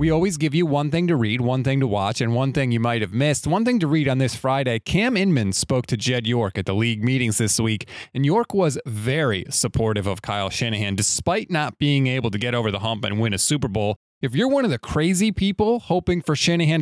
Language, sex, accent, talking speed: English, male, American, 250 wpm